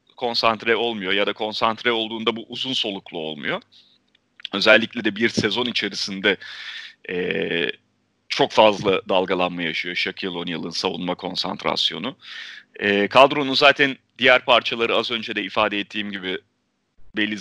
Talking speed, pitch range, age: 115 wpm, 110-155 Hz, 40-59